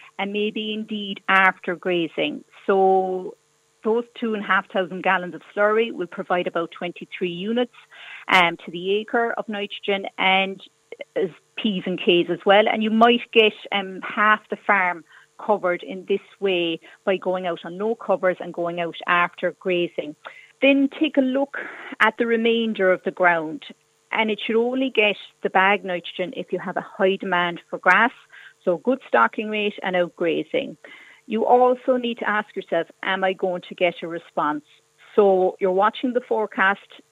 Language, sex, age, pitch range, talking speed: English, female, 40-59, 180-220 Hz, 165 wpm